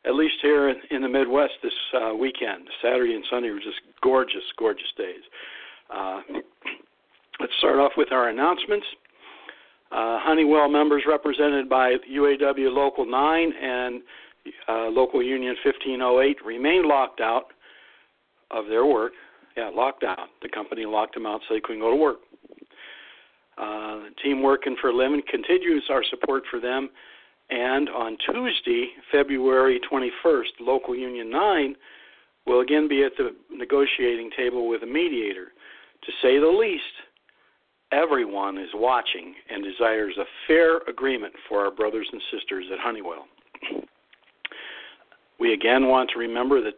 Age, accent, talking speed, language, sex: 60-79, American, 145 wpm, English, male